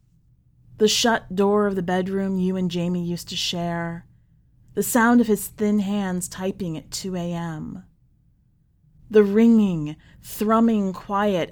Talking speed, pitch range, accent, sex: 135 wpm, 155-205 Hz, American, female